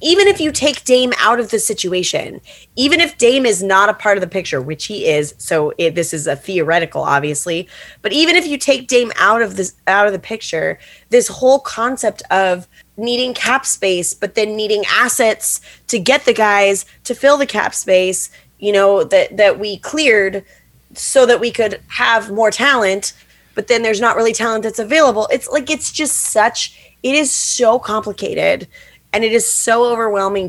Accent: American